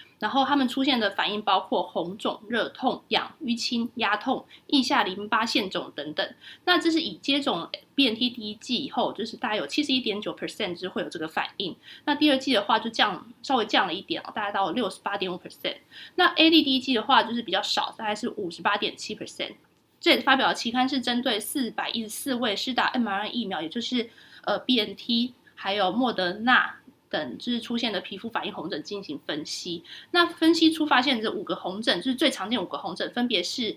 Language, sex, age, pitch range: Chinese, female, 20-39, 215-285 Hz